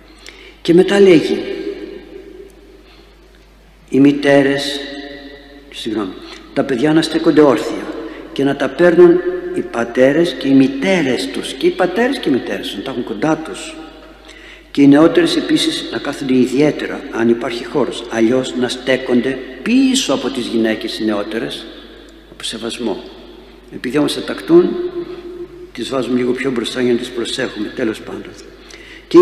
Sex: male